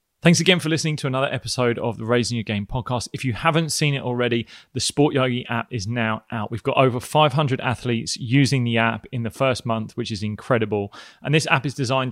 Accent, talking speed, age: British, 230 wpm, 20-39